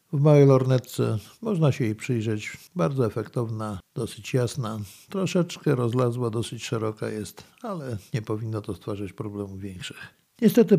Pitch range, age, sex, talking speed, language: 115-150 Hz, 50-69, male, 135 wpm, Polish